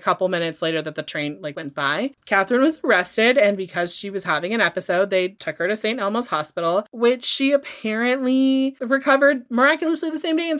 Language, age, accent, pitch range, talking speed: English, 30-49, American, 180-235 Hz, 205 wpm